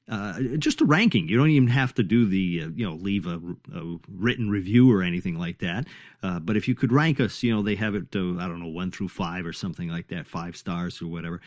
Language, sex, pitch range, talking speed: English, male, 95-150 Hz, 260 wpm